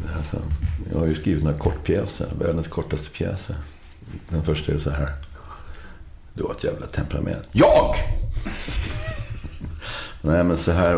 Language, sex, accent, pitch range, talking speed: Swedish, male, native, 75-85 Hz, 140 wpm